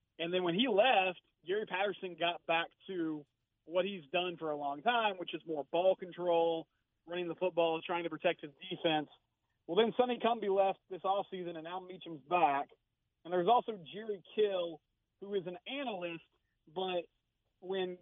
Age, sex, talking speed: 30-49, male, 175 wpm